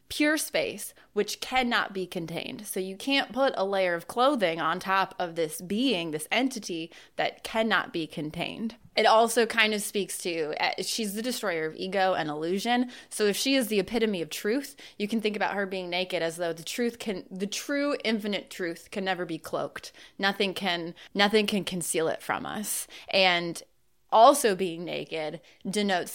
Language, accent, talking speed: English, American, 180 wpm